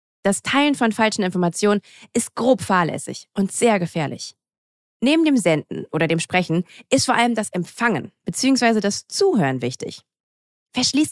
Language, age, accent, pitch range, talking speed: German, 30-49, German, 170-235 Hz, 145 wpm